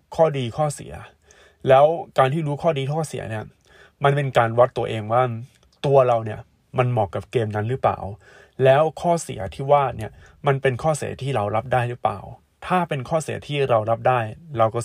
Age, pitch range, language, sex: 20-39, 110-140 Hz, Thai, male